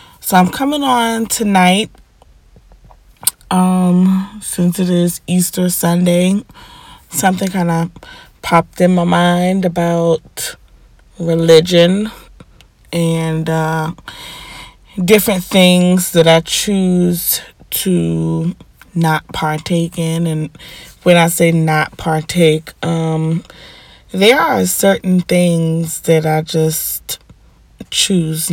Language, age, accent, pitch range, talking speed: English, 20-39, American, 160-180 Hz, 95 wpm